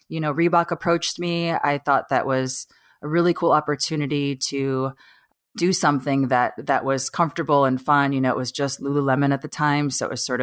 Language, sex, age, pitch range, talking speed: English, female, 30-49, 130-155 Hz, 200 wpm